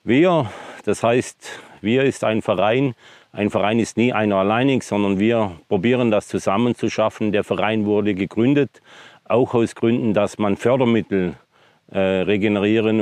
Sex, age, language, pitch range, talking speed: male, 40-59, German, 105-120 Hz, 145 wpm